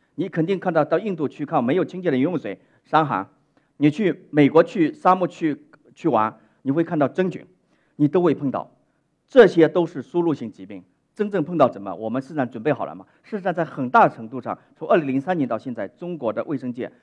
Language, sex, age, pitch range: Chinese, male, 40-59, 135-195 Hz